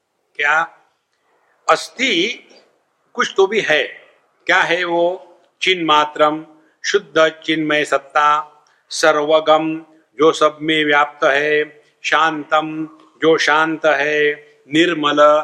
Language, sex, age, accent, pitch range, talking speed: English, male, 60-79, Indian, 150-185 Hz, 100 wpm